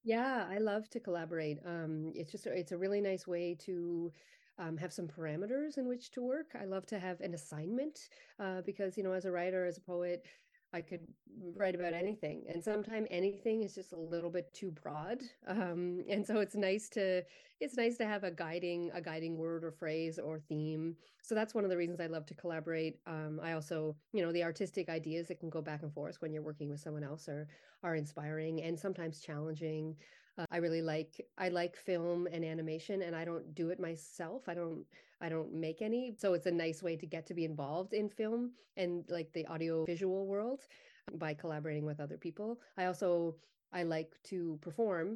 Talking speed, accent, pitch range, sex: 210 wpm, American, 160-195 Hz, female